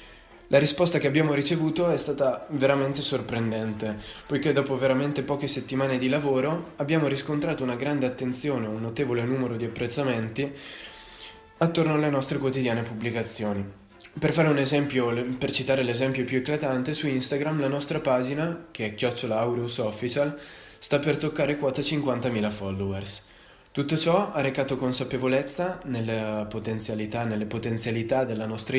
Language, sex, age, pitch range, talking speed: Italian, male, 20-39, 110-145 Hz, 140 wpm